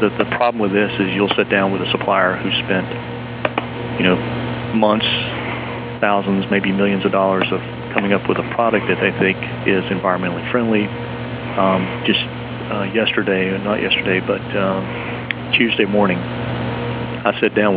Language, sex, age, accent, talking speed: English, male, 40-59, American, 155 wpm